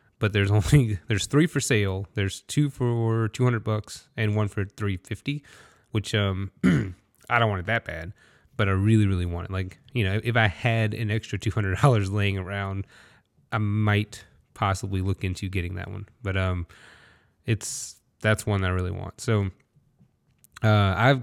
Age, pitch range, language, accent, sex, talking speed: 20-39, 100-115 Hz, English, American, male, 170 wpm